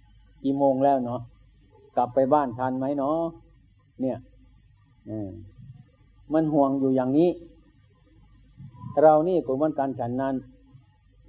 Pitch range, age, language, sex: 115-140 Hz, 60-79, Thai, male